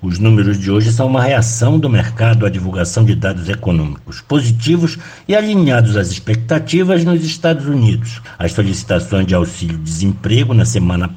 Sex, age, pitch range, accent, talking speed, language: male, 60-79, 105-150 Hz, Brazilian, 150 wpm, Portuguese